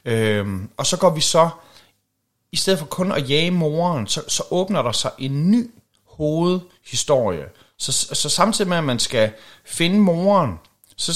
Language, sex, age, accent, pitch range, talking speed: Danish, male, 30-49, native, 115-165 Hz, 165 wpm